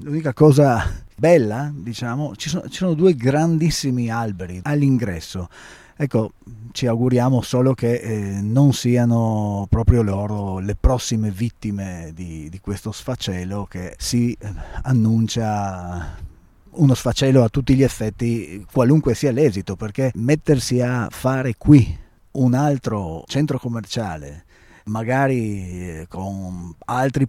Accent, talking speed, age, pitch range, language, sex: native, 115 wpm, 30-49, 95-125 Hz, Italian, male